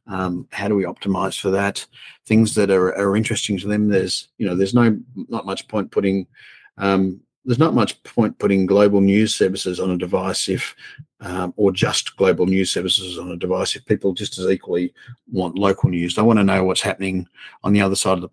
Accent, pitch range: Australian, 95-105 Hz